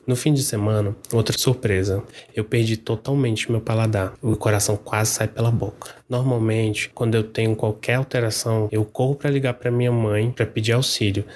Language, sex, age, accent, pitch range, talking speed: Portuguese, male, 20-39, Brazilian, 110-125 Hz, 175 wpm